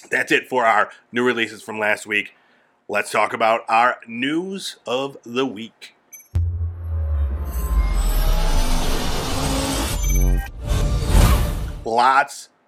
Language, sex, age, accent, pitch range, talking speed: English, male, 30-49, American, 105-140 Hz, 85 wpm